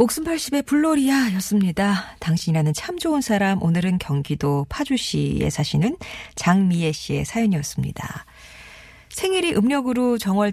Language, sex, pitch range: Korean, female, 155-220 Hz